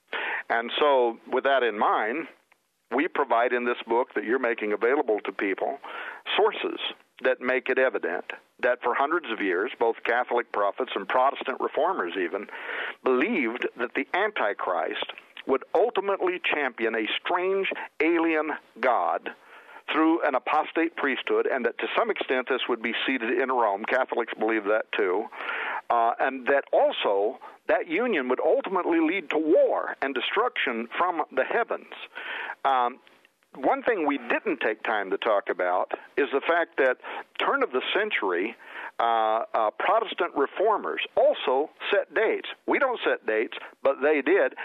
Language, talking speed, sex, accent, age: English, 150 wpm, male, American, 60-79